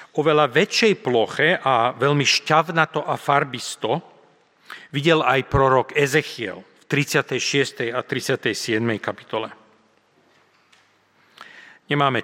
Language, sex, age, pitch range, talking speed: Slovak, male, 40-59, 125-170 Hz, 90 wpm